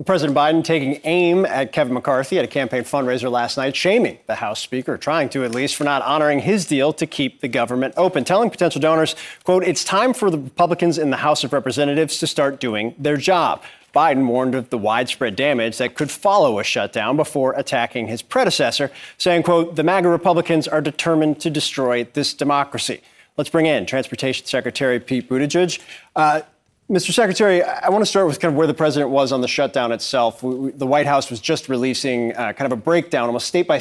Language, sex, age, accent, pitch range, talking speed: English, male, 30-49, American, 125-160 Hz, 205 wpm